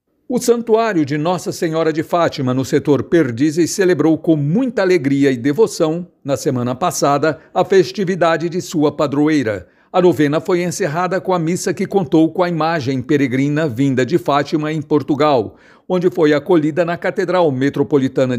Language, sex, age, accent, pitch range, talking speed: Portuguese, male, 60-79, Brazilian, 145-180 Hz, 155 wpm